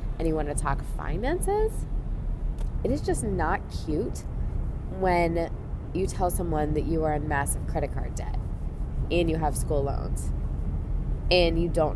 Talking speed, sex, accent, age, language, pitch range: 155 wpm, female, American, 20-39, English, 105-170 Hz